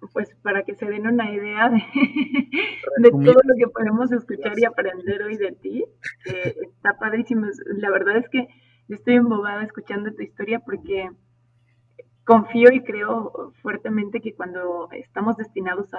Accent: Mexican